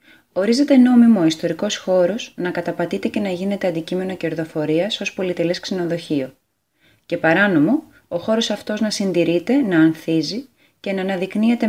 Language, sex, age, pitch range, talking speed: Greek, female, 20-39, 160-195 Hz, 140 wpm